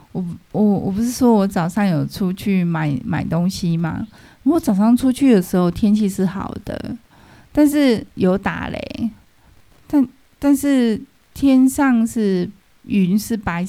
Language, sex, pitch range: Chinese, female, 185-240 Hz